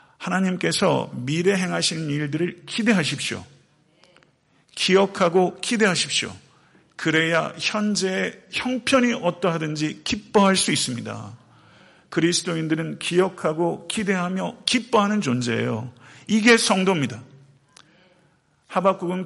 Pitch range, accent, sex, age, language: 140-195 Hz, native, male, 50-69, Korean